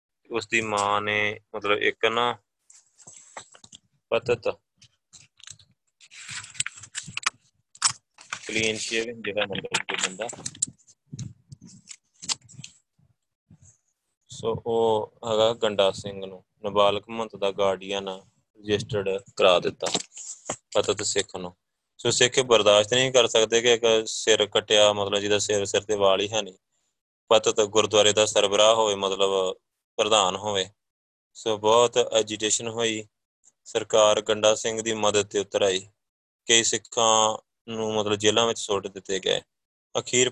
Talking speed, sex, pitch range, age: 110 wpm, male, 100-110 Hz, 20-39